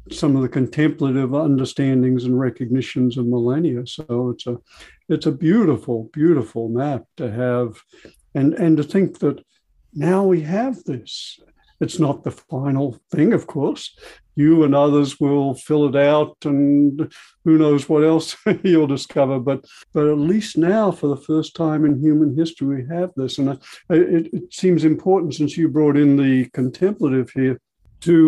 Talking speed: 165 wpm